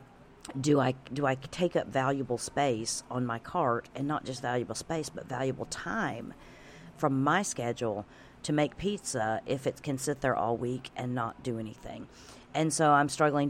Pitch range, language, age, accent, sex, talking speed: 120-145 Hz, English, 40-59, American, female, 180 wpm